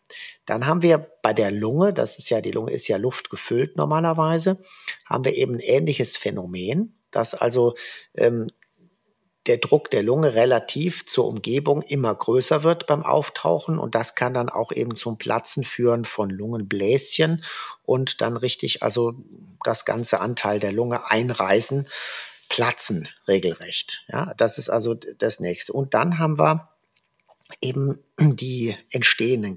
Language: German